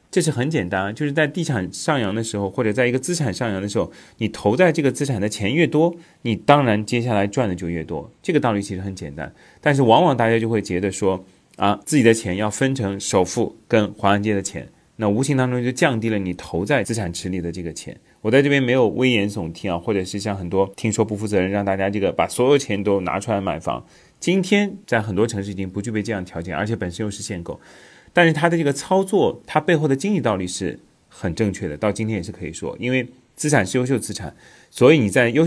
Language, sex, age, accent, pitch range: Chinese, male, 30-49, native, 95-130 Hz